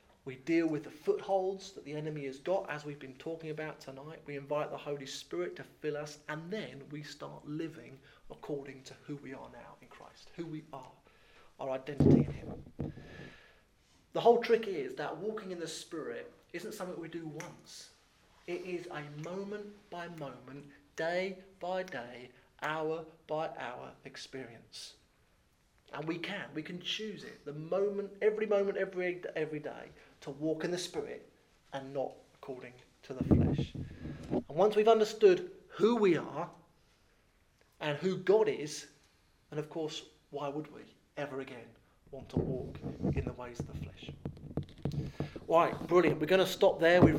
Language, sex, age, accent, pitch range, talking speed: English, male, 30-49, British, 145-180 Hz, 170 wpm